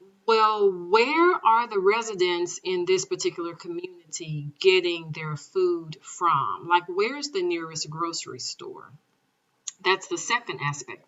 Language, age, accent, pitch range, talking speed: English, 40-59, American, 160-235 Hz, 125 wpm